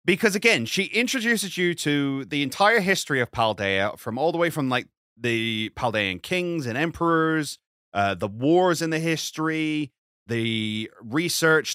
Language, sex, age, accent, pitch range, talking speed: English, male, 30-49, British, 120-185 Hz, 155 wpm